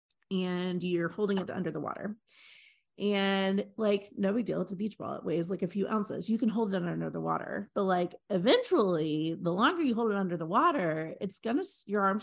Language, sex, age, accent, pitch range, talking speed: English, female, 30-49, American, 175-230 Hz, 215 wpm